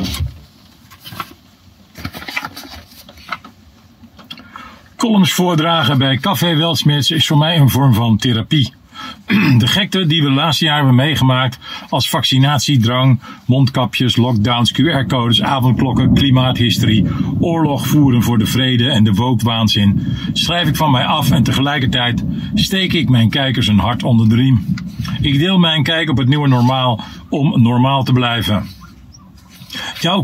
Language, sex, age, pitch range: Dutch, male, 50-69, 115-145 Hz